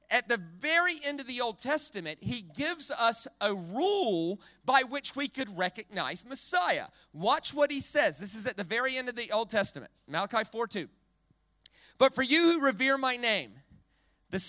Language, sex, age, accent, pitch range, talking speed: English, male, 40-59, American, 200-280 Hz, 180 wpm